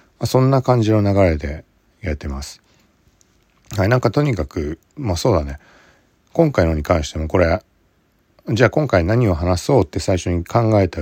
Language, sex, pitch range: Japanese, male, 75-100 Hz